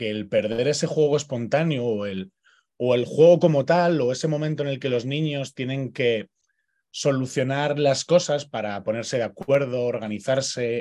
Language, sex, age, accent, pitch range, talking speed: Spanish, male, 20-39, Spanish, 115-145 Hz, 160 wpm